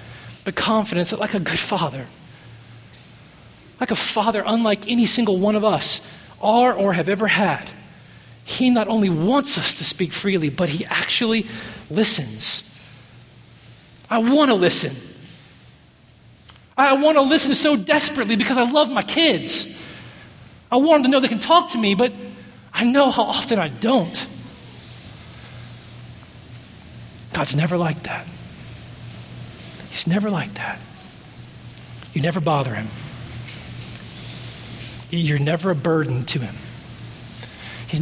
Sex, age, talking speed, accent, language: male, 30-49, 135 wpm, American, English